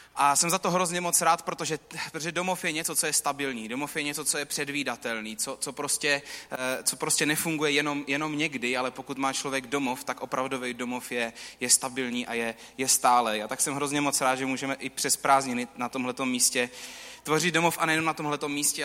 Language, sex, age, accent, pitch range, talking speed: Czech, male, 20-39, native, 135-175 Hz, 210 wpm